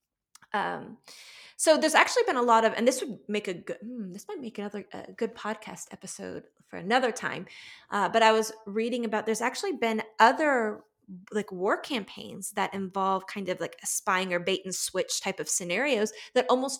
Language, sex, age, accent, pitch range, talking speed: English, female, 20-39, American, 190-245 Hz, 195 wpm